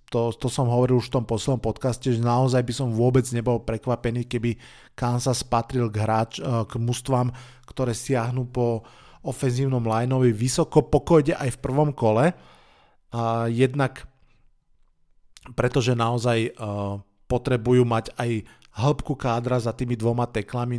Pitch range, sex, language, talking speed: 115-135 Hz, male, Slovak, 140 wpm